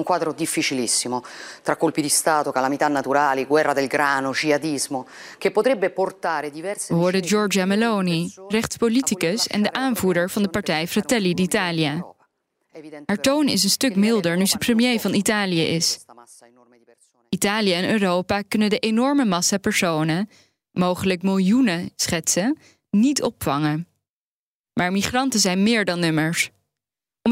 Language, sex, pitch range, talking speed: Dutch, female, 160-220 Hz, 120 wpm